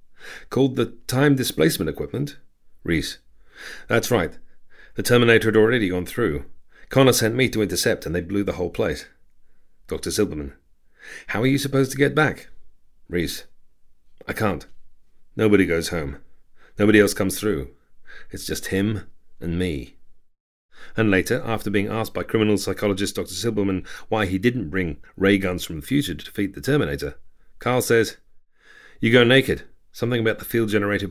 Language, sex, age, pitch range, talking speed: English, male, 40-59, 90-115 Hz, 160 wpm